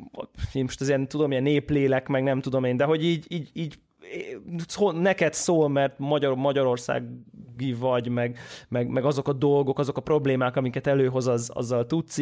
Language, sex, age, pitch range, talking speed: Hungarian, male, 20-39, 125-150 Hz, 175 wpm